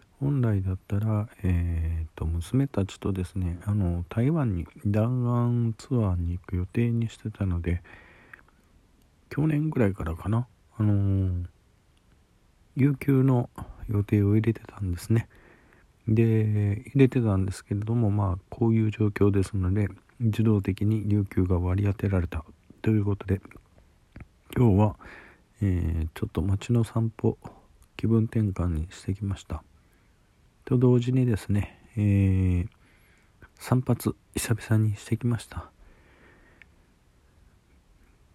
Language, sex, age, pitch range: Japanese, male, 40-59, 90-120 Hz